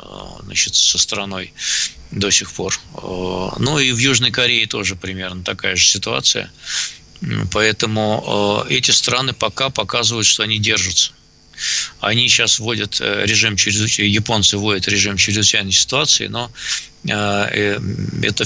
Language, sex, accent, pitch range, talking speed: Russian, male, native, 100-120 Hz, 110 wpm